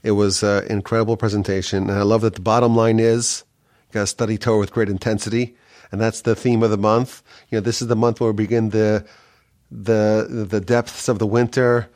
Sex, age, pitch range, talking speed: male, 30-49, 110-130 Hz, 210 wpm